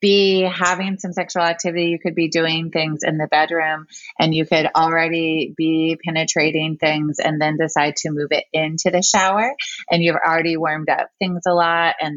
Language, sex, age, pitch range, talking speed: English, female, 20-39, 150-180 Hz, 185 wpm